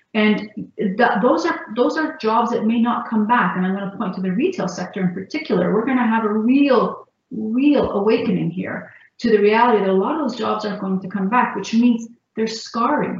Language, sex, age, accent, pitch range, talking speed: English, female, 40-59, Canadian, 195-240 Hz, 225 wpm